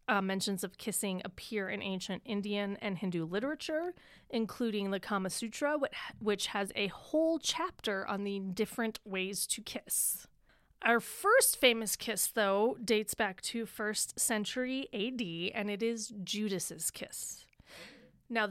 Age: 30-49